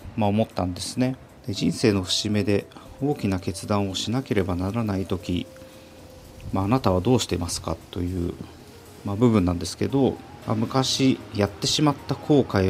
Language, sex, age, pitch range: Japanese, male, 40-59, 95-120 Hz